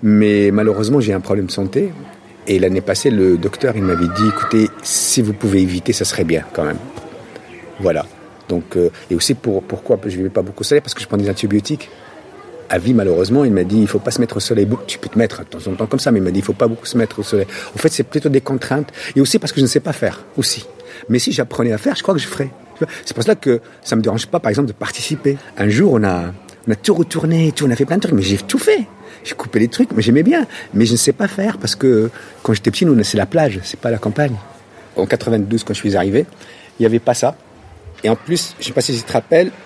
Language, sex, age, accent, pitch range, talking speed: French, male, 50-69, French, 105-145 Hz, 285 wpm